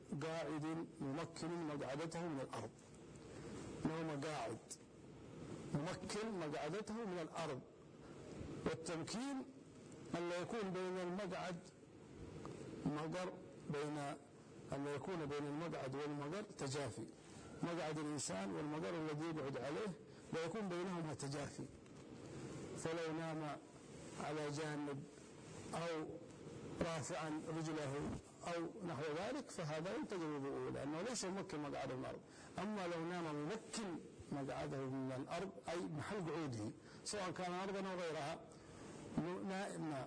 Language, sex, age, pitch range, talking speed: Arabic, male, 50-69, 145-175 Hz, 100 wpm